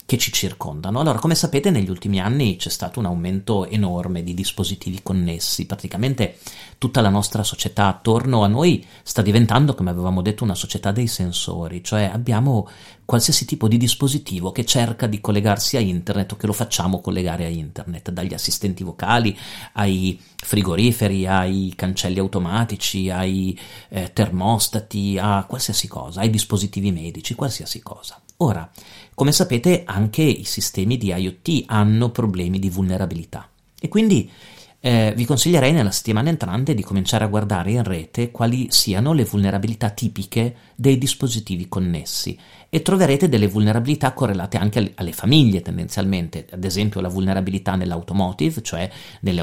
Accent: native